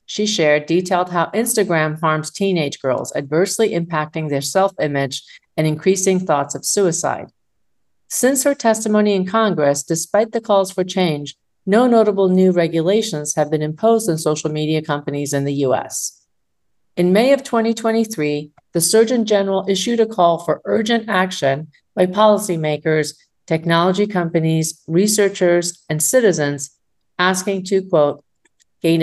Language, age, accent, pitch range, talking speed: English, 50-69, American, 155-205 Hz, 135 wpm